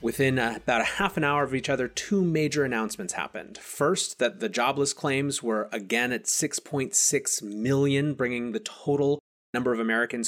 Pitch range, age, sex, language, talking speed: 115-140 Hz, 30-49, male, English, 170 wpm